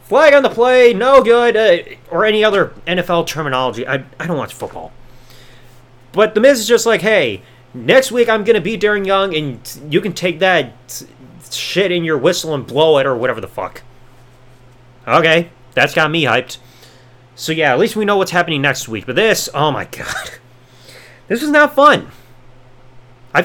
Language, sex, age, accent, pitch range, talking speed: English, male, 30-49, American, 125-215 Hz, 190 wpm